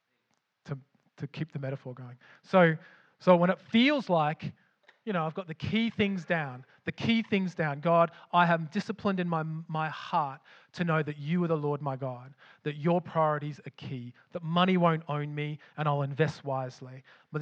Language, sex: English, male